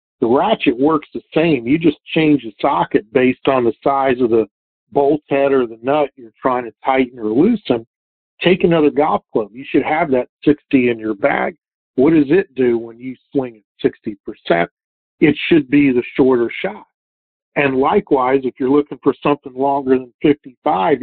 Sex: male